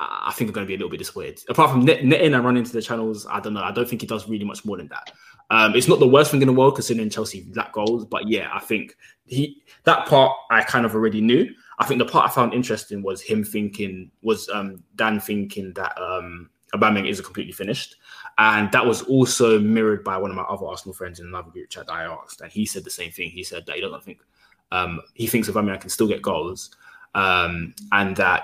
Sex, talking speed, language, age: male, 255 wpm, English, 20-39